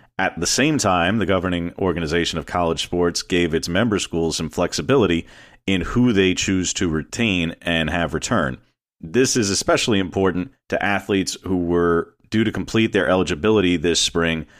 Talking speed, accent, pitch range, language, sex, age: 165 wpm, American, 85-95 Hz, English, male, 40-59